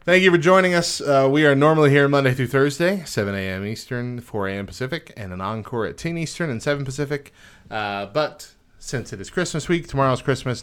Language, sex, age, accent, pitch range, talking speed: English, male, 30-49, American, 100-140 Hz, 210 wpm